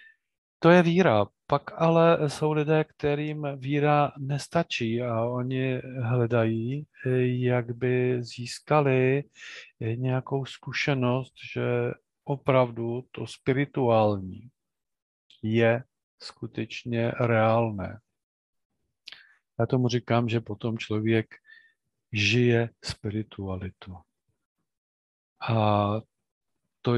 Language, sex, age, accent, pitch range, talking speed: Czech, male, 50-69, native, 110-130 Hz, 80 wpm